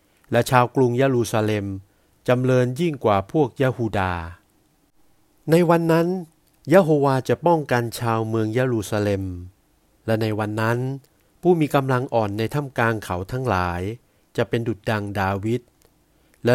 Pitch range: 105-140 Hz